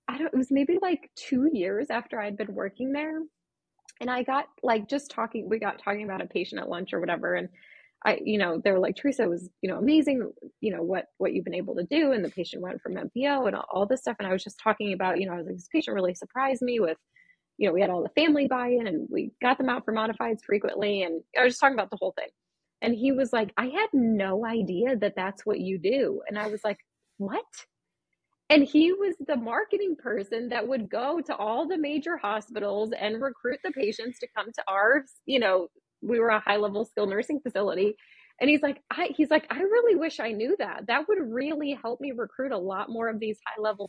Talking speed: 240 wpm